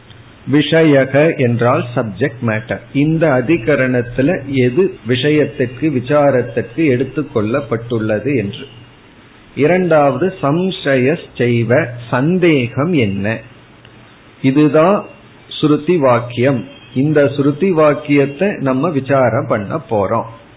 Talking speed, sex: 60 wpm, male